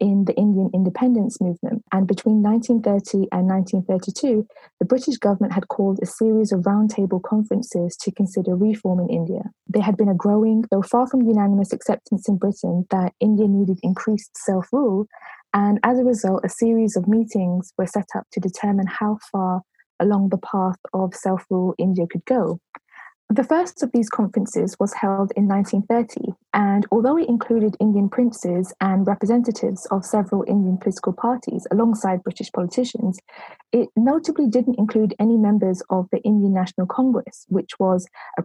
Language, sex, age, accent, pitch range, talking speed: English, female, 20-39, British, 190-230 Hz, 160 wpm